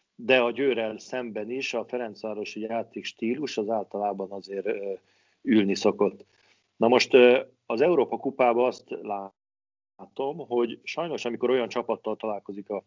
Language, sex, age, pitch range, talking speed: Hungarian, male, 40-59, 105-130 Hz, 120 wpm